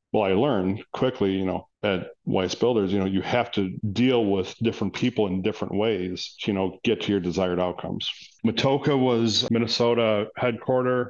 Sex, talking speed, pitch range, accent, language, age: male, 180 wpm, 100-115 Hz, American, English, 40-59